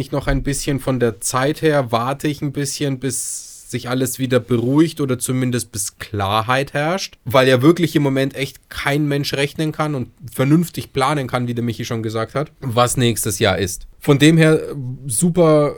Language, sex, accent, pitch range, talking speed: German, male, German, 120-145 Hz, 185 wpm